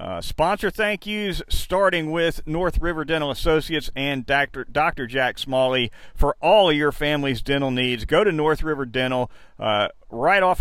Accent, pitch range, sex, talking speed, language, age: American, 125-155 Hz, male, 170 wpm, English, 40-59